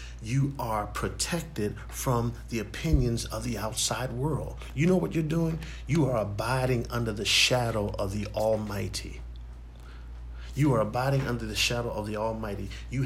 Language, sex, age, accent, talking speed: English, male, 50-69, American, 155 wpm